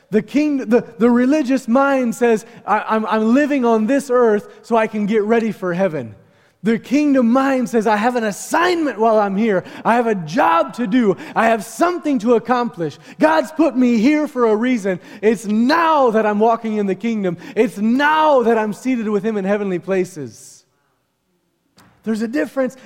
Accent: American